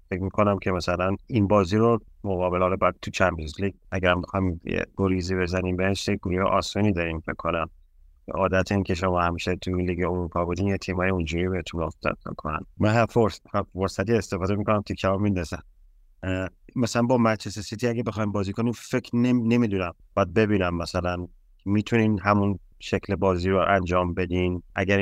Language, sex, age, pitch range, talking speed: Persian, male, 30-49, 90-100 Hz, 165 wpm